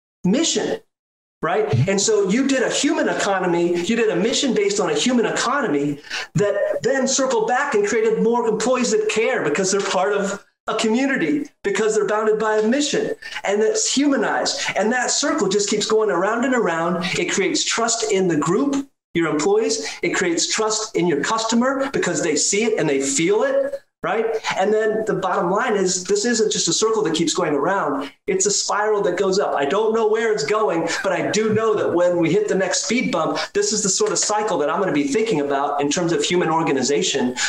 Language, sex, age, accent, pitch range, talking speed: English, male, 30-49, American, 170-230 Hz, 210 wpm